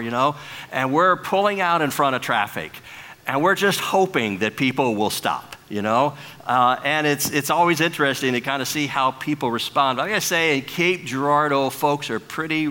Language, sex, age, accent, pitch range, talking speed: English, male, 50-69, American, 135-165 Hz, 205 wpm